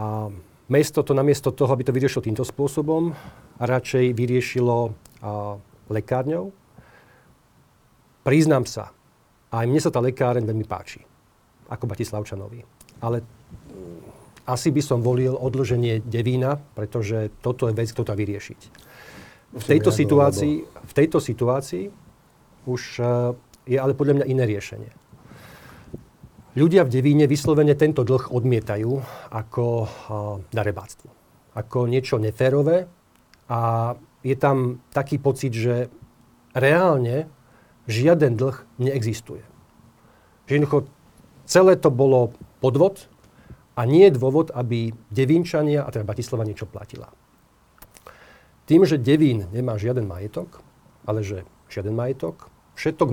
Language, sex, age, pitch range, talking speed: Slovak, male, 40-59, 115-140 Hz, 115 wpm